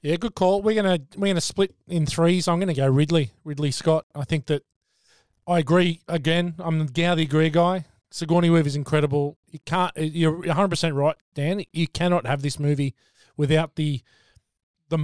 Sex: male